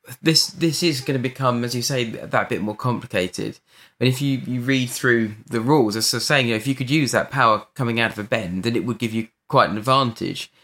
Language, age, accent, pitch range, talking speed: English, 20-39, British, 115-150 Hz, 260 wpm